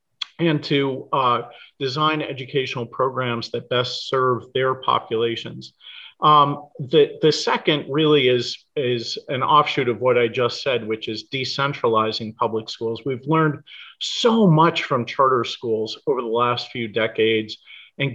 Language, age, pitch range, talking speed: English, 40-59, 115-145 Hz, 140 wpm